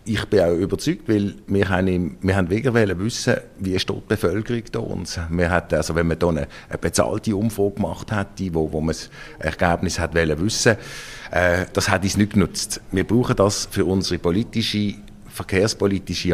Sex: male